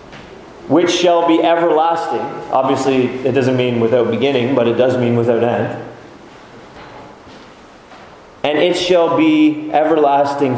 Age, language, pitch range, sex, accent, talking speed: 30-49, English, 115-145 Hz, male, American, 120 wpm